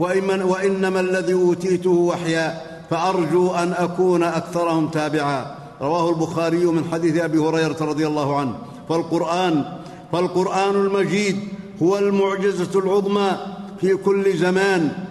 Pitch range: 170-190 Hz